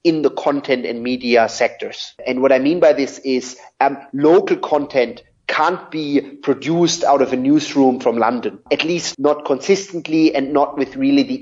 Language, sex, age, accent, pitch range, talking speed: English, male, 30-49, German, 135-170 Hz, 180 wpm